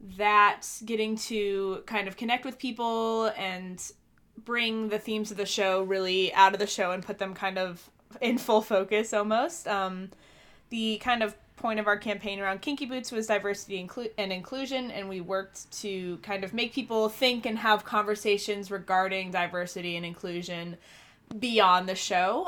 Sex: female